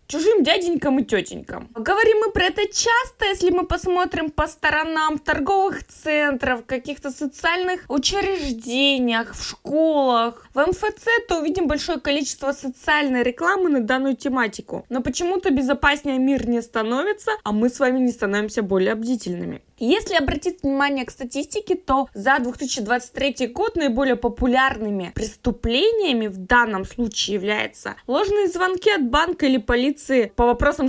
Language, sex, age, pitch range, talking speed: Russian, female, 20-39, 235-315 Hz, 135 wpm